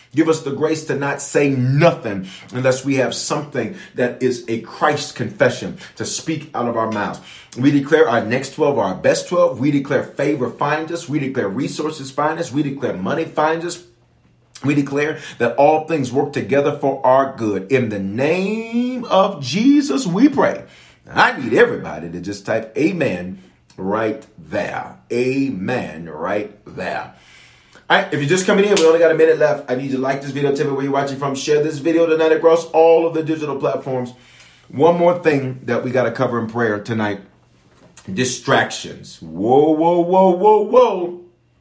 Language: English